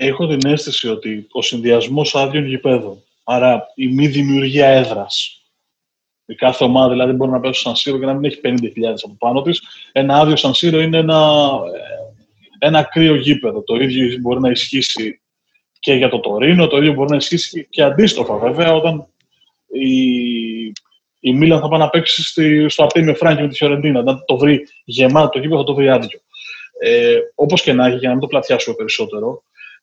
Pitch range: 130-165 Hz